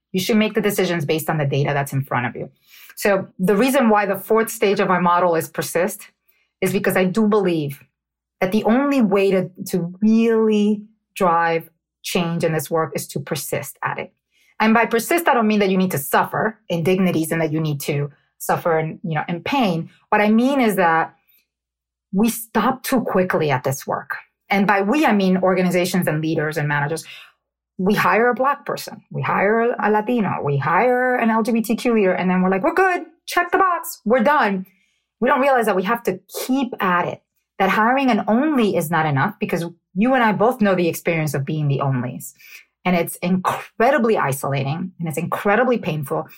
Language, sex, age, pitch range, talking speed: English, female, 30-49, 165-225 Hz, 200 wpm